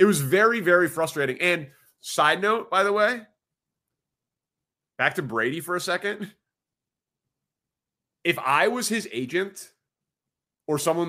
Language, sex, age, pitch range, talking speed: English, male, 30-49, 135-175 Hz, 130 wpm